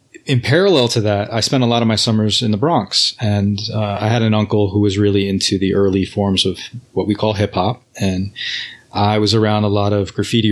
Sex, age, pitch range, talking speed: male, 30-49, 100-115 Hz, 230 wpm